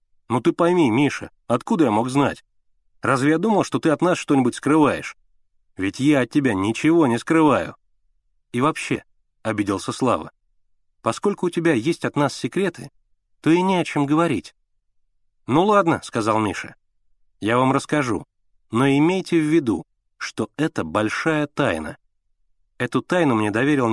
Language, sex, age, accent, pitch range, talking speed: Russian, male, 30-49, native, 100-140 Hz, 155 wpm